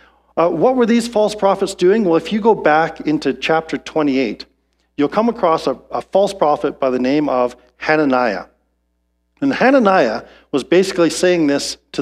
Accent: American